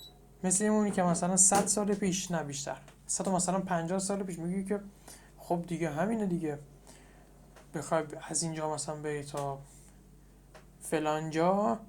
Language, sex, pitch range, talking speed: Persian, male, 155-190 Hz, 140 wpm